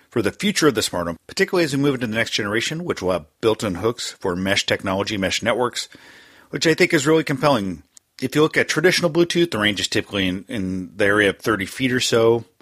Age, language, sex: 40-59, English, male